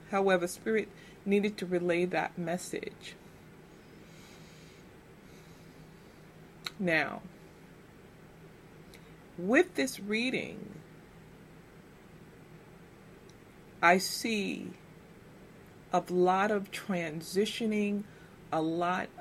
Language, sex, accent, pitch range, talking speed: English, female, American, 165-200 Hz, 60 wpm